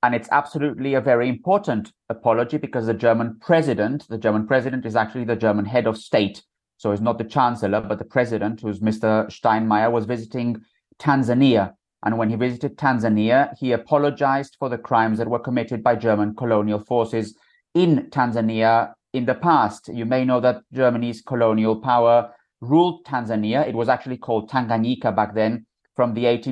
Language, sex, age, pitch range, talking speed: English, male, 30-49, 110-130 Hz, 175 wpm